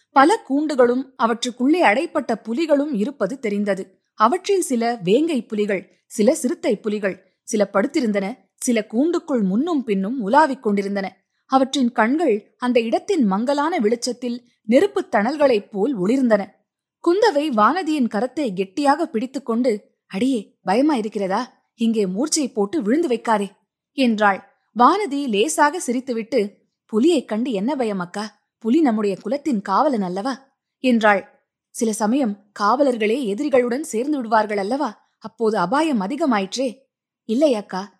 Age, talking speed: 20-39, 110 wpm